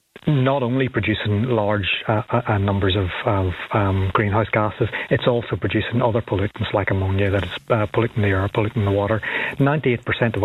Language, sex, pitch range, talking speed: English, male, 105-125 Hz, 180 wpm